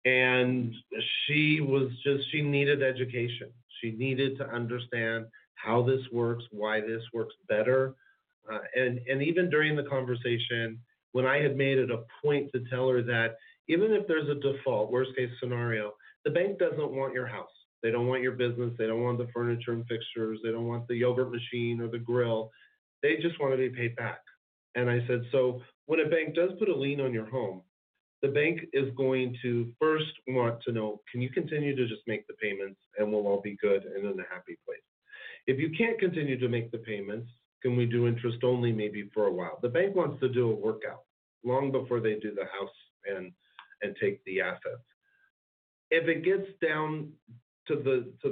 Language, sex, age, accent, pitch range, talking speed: English, male, 40-59, American, 120-145 Hz, 200 wpm